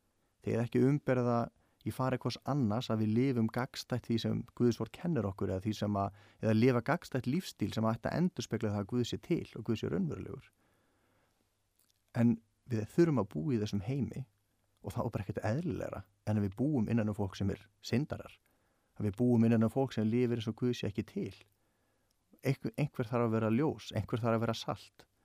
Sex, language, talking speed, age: male, English, 215 wpm, 30-49